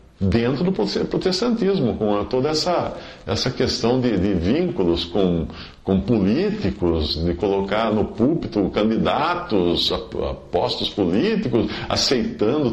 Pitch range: 85-130 Hz